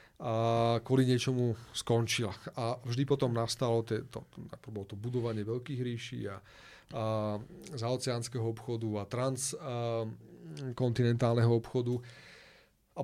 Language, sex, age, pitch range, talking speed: Slovak, male, 30-49, 115-135 Hz, 95 wpm